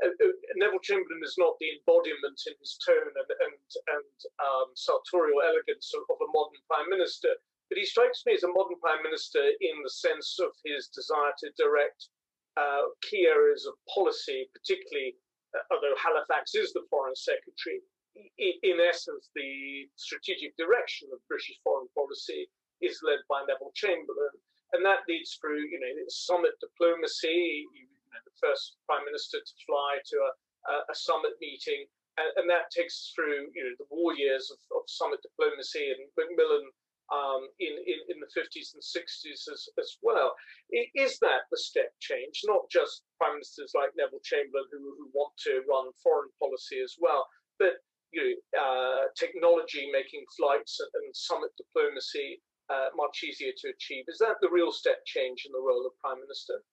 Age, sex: 40-59, male